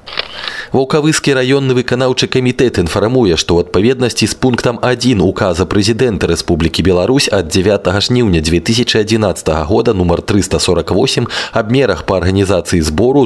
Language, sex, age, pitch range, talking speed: Russian, male, 20-39, 90-125 Hz, 120 wpm